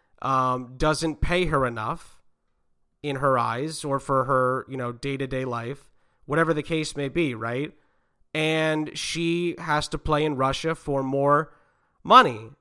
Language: English